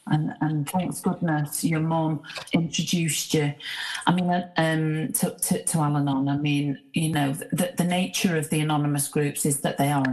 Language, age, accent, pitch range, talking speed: English, 40-59, British, 150-180 Hz, 180 wpm